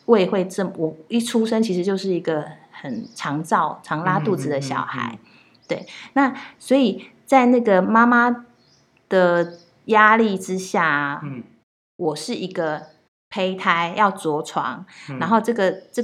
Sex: female